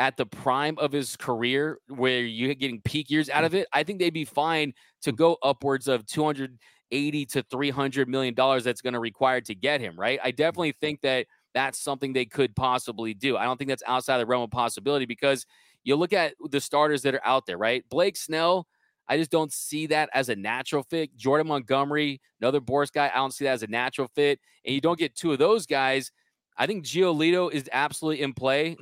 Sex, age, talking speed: male, 30-49, 220 wpm